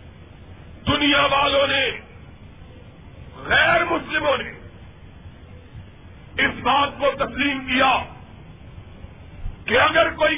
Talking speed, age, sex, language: 80 wpm, 40-59, male, Urdu